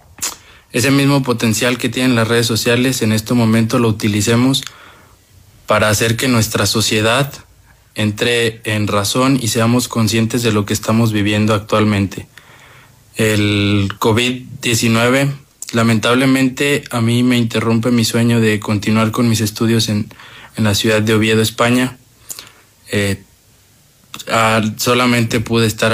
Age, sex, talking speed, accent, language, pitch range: 20-39, male, 125 wpm, Mexican, Spanish, 110-120 Hz